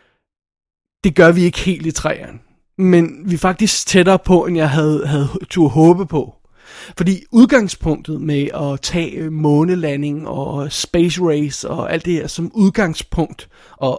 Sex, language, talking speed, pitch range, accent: male, Danish, 155 wpm, 155-175 Hz, native